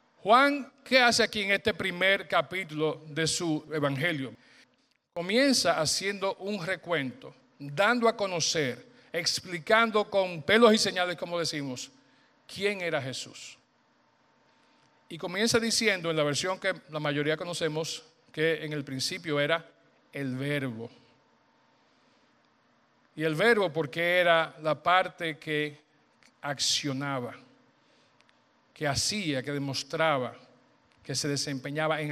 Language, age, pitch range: Spanish, 50-69, 145-200 Hz